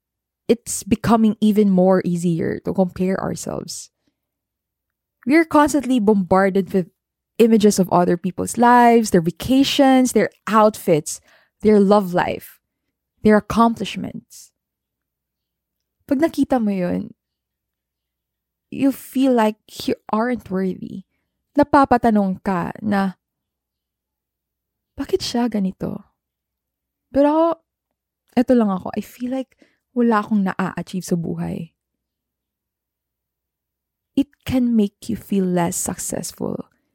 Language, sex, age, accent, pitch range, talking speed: English, female, 20-39, Filipino, 180-235 Hz, 100 wpm